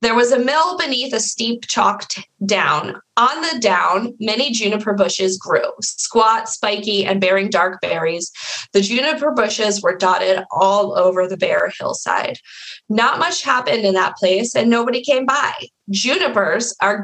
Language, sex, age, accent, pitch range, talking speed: English, female, 20-39, American, 190-245 Hz, 155 wpm